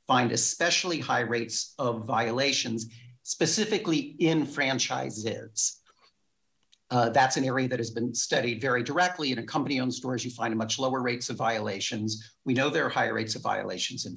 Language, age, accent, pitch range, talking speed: English, 50-69, American, 120-155 Hz, 165 wpm